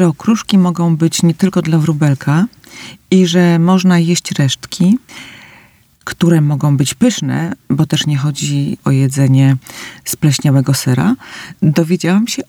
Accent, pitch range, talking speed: native, 145-185 Hz, 130 wpm